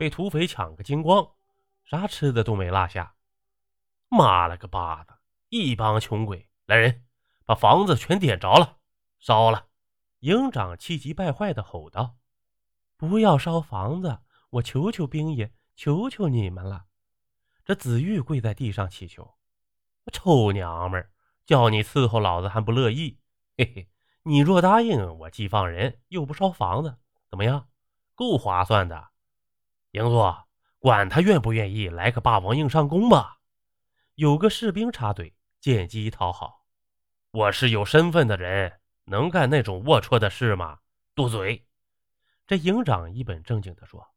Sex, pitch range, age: male, 95-140 Hz, 20-39